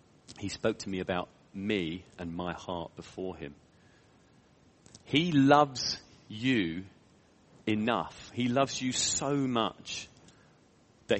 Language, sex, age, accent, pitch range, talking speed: English, male, 40-59, British, 95-130 Hz, 115 wpm